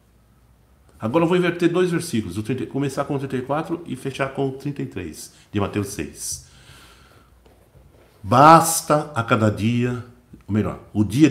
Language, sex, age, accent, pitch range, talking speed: Portuguese, male, 60-79, Brazilian, 105-140 Hz, 140 wpm